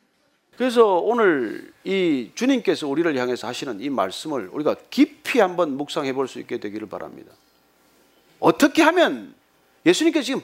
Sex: male